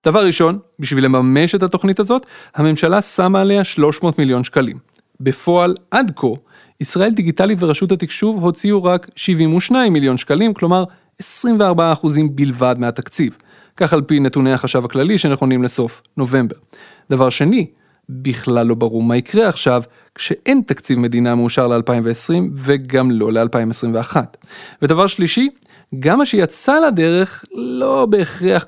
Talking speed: 130 wpm